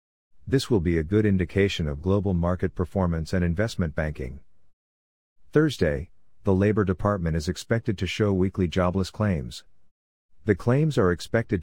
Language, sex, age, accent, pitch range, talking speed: English, male, 50-69, American, 80-105 Hz, 145 wpm